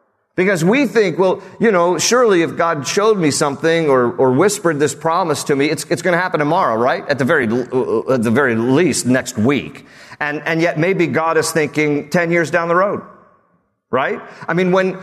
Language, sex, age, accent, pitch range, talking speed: English, male, 40-59, American, 155-210 Hz, 205 wpm